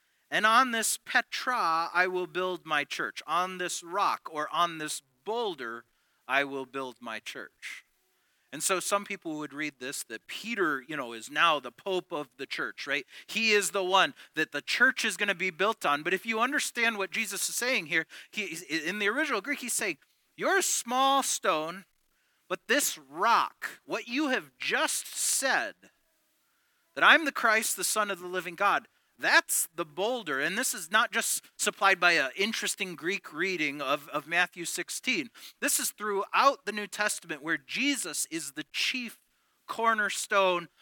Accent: American